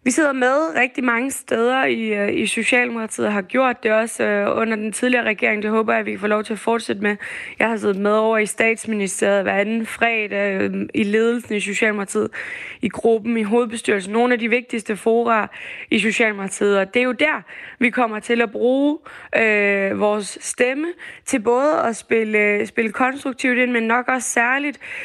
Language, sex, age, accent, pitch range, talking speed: Danish, female, 20-39, native, 215-255 Hz, 190 wpm